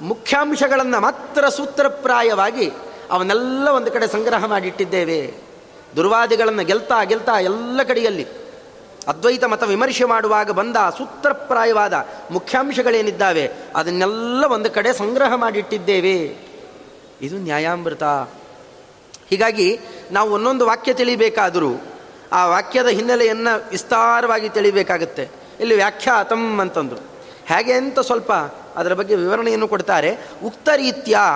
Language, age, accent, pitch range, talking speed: Kannada, 30-49, native, 210-265 Hz, 90 wpm